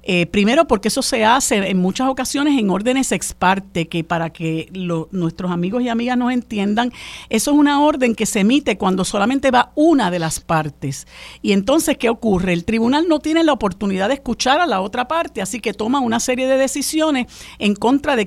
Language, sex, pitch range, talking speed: Spanish, female, 190-255 Hz, 205 wpm